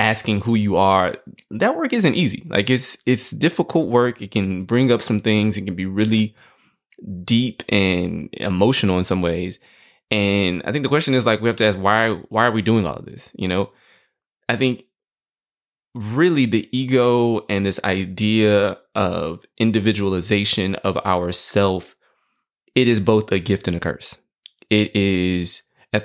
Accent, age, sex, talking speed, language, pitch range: American, 20-39, male, 170 wpm, English, 95-110 Hz